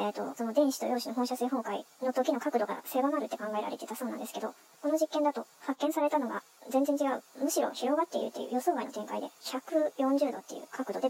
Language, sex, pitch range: Japanese, male, 230-280 Hz